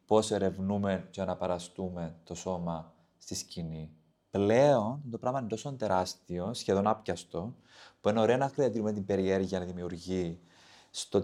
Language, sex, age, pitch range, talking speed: Greek, male, 20-39, 95-120 Hz, 140 wpm